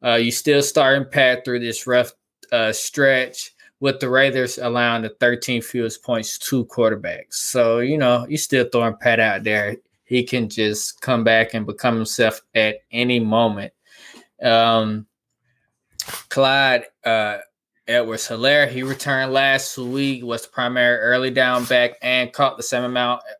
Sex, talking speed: male, 155 wpm